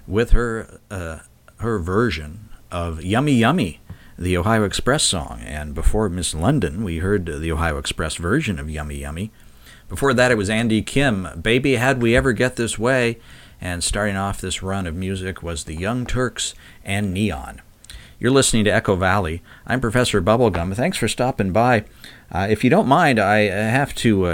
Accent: American